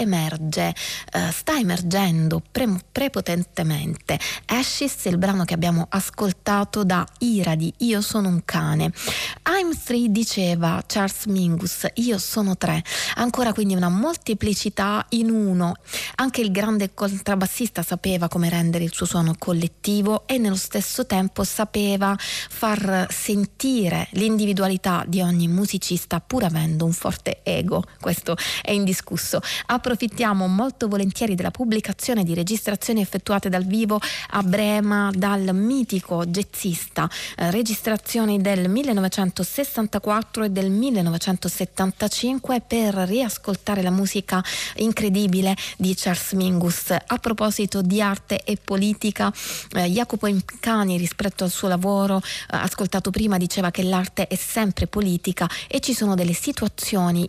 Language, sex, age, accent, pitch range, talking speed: Italian, female, 20-39, native, 180-215 Hz, 125 wpm